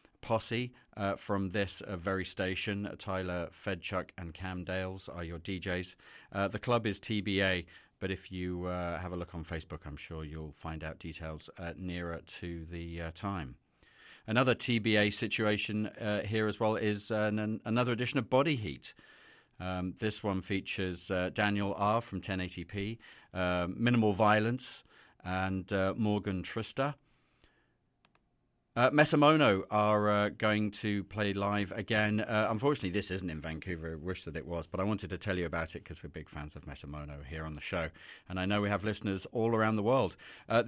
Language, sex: English, male